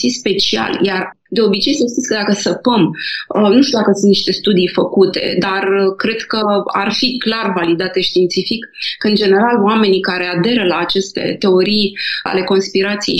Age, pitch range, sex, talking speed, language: 20-39, 185-215 Hz, female, 160 wpm, Romanian